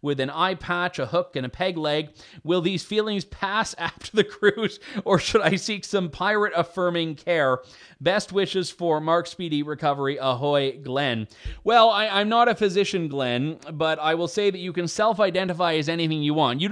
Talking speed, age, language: 185 wpm, 30-49, English